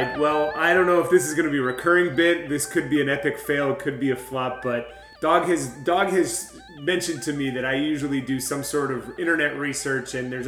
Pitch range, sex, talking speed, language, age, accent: 130-170 Hz, male, 240 wpm, English, 30-49, American